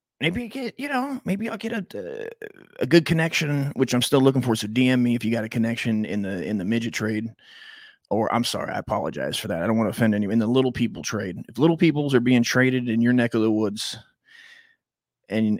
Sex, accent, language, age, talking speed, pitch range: male, American, English, 30-49, 240 wpm, 115-135 Hz